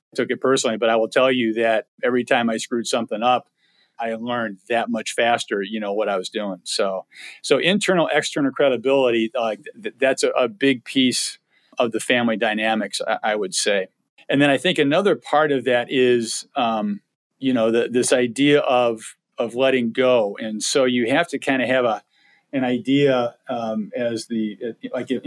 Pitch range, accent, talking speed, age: 115-130 Hz, American, 190 wpm, 40-59